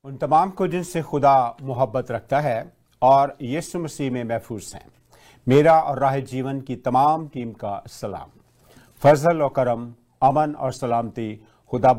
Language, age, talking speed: Hindi, 50-69, 150 wpm